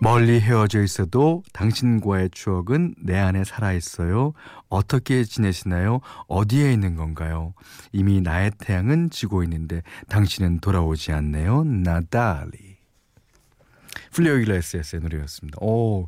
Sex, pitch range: male, 90-125 Hz